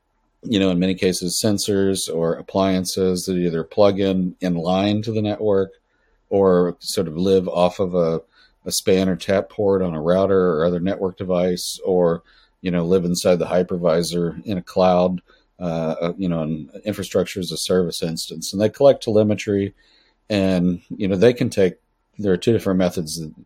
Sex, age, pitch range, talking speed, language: male, 50-69, 85-100 Hz, 180 wpm, English